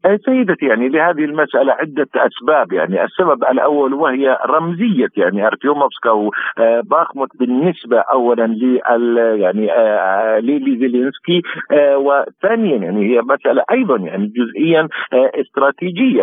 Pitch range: 130-175 Hz